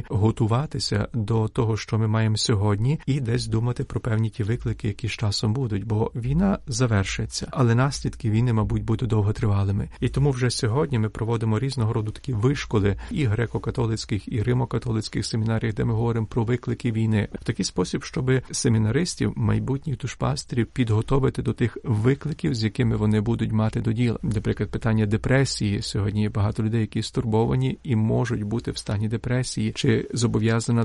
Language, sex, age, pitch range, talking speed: Ukrainian, male, 40-59, 110-130 Hz, 160 wpm